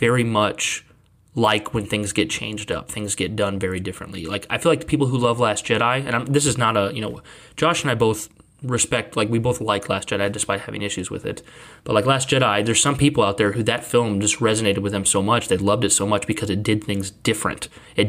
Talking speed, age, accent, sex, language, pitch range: 250 wpm, 20-39, American, male, English, 100-125 Hz